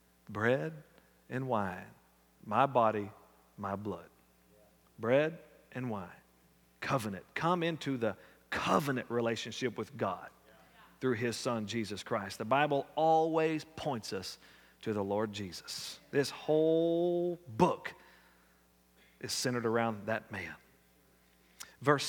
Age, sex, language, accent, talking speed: 40-59, male, English, American, 110 wpm